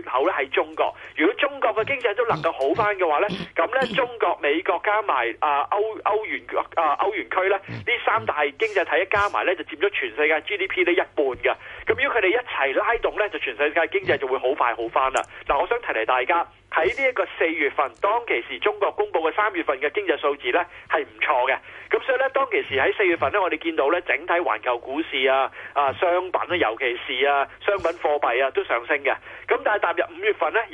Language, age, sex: Chinese, 40-59, male